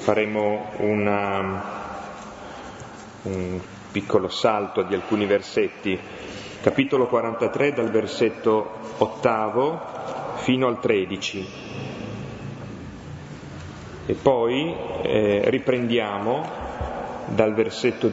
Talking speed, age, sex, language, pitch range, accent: 70 wpm, 30-49, male, Italian, 95-115 Hz, native